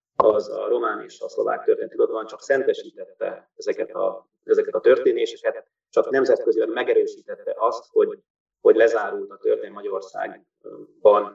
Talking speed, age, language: 125 wpm, 30-49, Hungarian